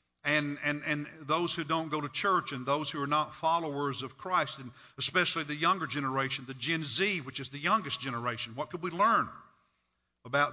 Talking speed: 200 wpm